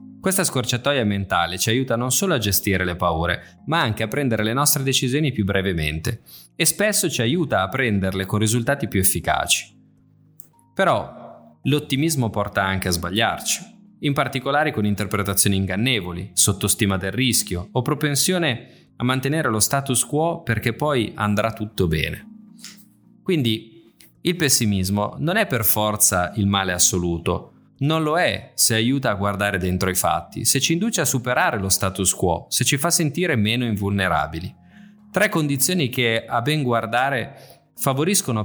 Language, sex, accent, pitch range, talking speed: Italian, male, native, 100-150 Hz, 150 wpm